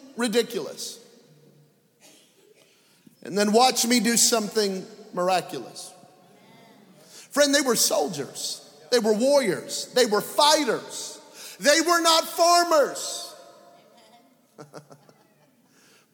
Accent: American